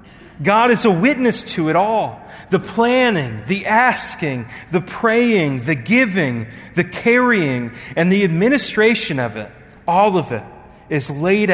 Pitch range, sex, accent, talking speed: 130-180 Hz, male, American, 140 wpm